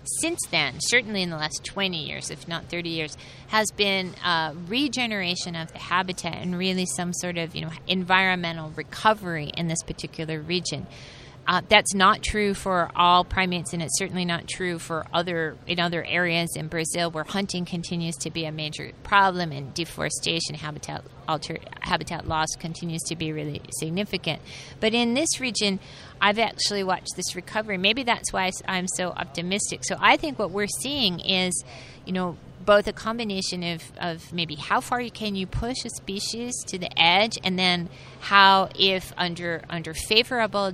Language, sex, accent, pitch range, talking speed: English, female, American, 165-195 Hz, 170 wpm